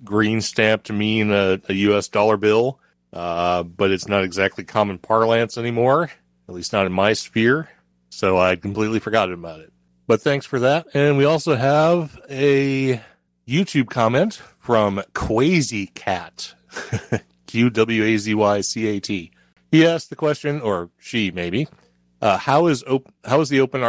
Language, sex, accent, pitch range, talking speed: English, male, American, 100-130 Hz, 165 wpm